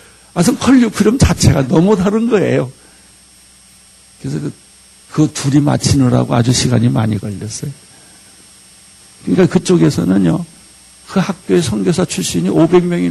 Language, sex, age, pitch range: Korean, male, 60-79, 100-165 Hz